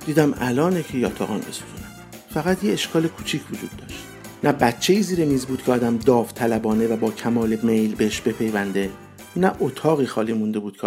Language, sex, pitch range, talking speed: Persian, male, 115-180 Hz, 170 wpm